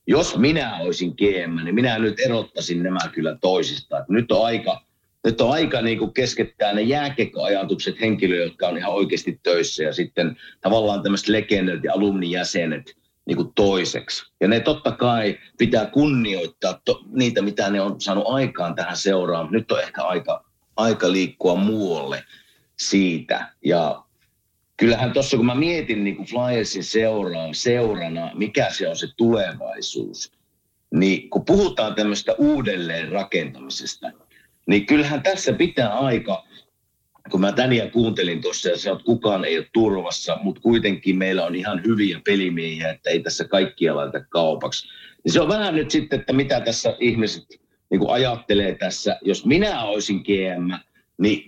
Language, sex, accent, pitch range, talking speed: Finnish, male, native, 95-120 Hz, 145 wpm